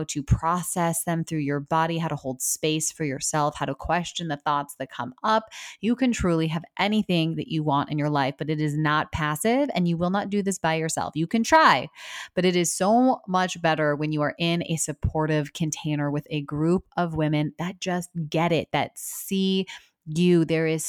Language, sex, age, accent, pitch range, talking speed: English, female, 20-39, American, 155-180 Hz, 215 wpm